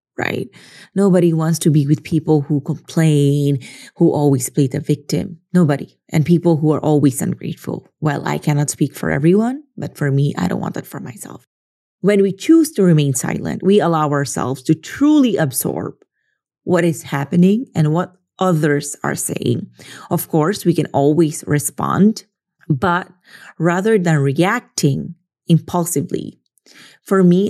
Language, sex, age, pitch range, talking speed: English, female, 30-49, 150-185 Hz, 150 wpm